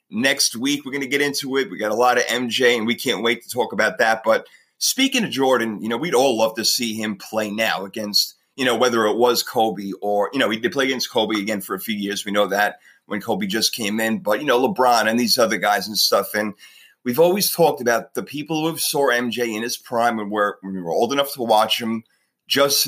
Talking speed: 265 wpm